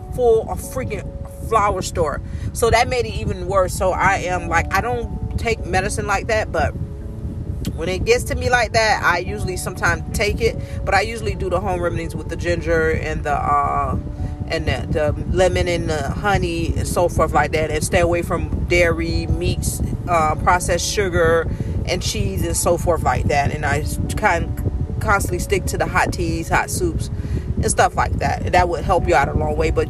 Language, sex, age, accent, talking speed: English, female, 40-59, American, 205 wpm